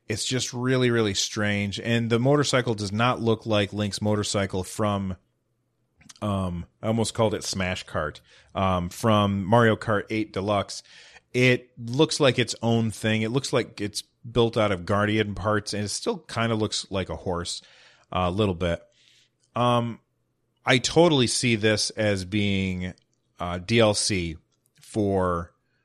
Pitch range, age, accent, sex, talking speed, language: 95-115 Hz, 30-49, American, male, 155 wpm, English